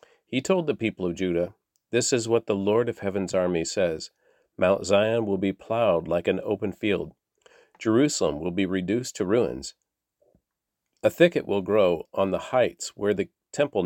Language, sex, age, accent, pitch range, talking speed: English, male, 50-69, American, 95-125 Hz, 175 wpm